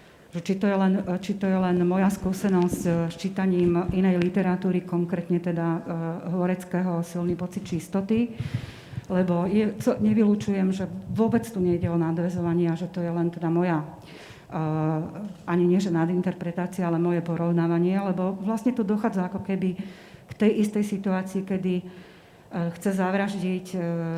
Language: Slovak